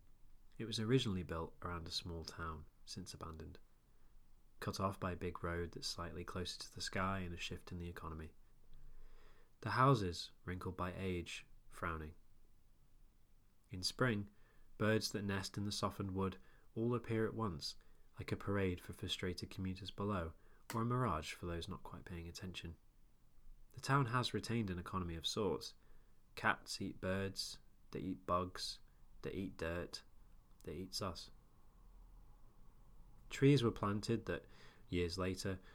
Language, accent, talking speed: English, British, 150 wpm